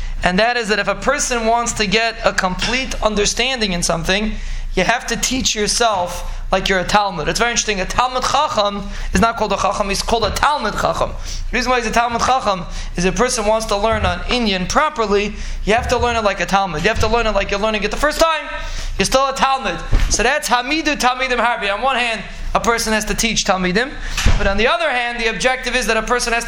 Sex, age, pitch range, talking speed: male, 20-39, 205-245 Hz, 240 wpm